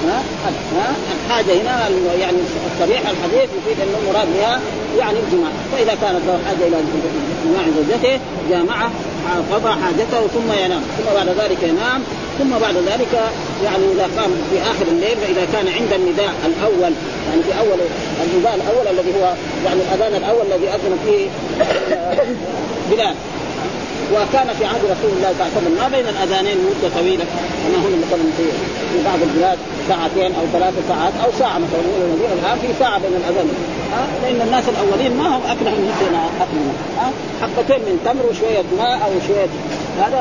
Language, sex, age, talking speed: Arabic, female, 40-59, 160 wpm